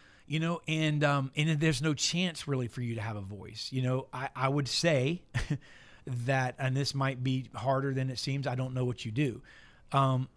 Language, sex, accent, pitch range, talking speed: English, male, American, 130-145 Hz, 215 wpm